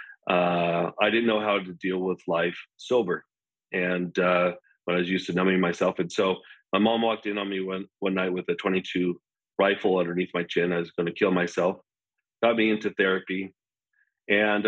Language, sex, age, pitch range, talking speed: English, male, 40-59, 90-105 Hz, 195 wpm